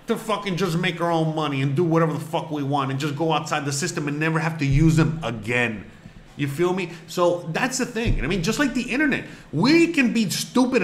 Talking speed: 250 wpm